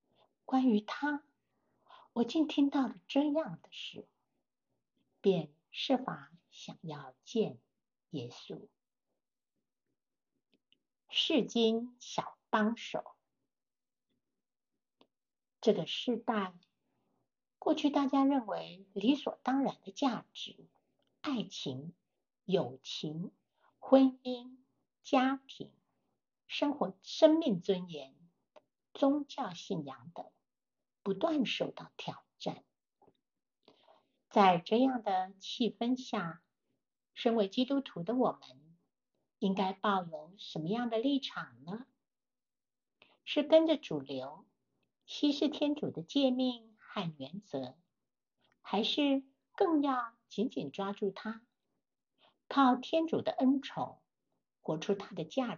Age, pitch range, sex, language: 60-79, 190-275 Hz, female, Chinese